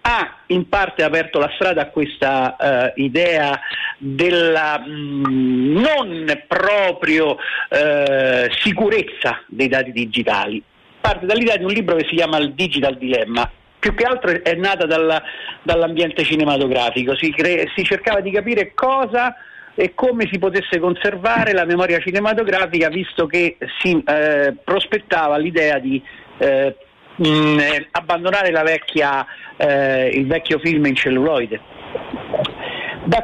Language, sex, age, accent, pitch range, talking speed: Italian, male, 50-69, native, 145-200 Hz, 115 wpm